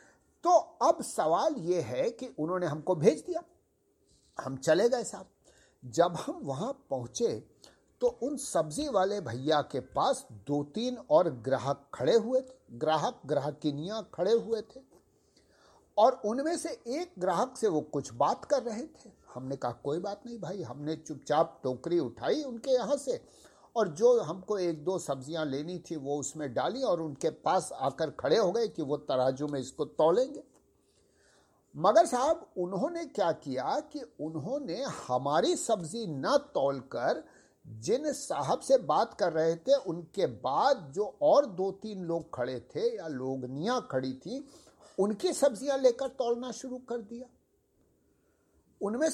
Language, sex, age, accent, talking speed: English, male, 50-69, Indian, 150 wpm